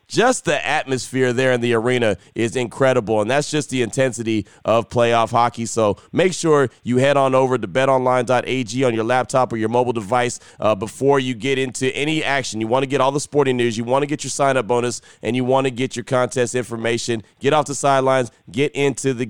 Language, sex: English, male